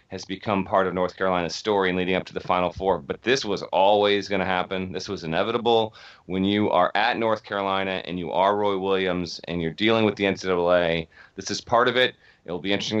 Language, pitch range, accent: English, 90-105 Hz, American